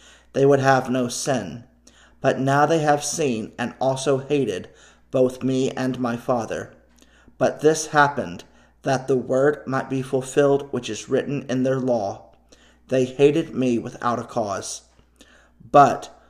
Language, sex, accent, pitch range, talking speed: English, male, American, 120-145 Hz, 145 wpm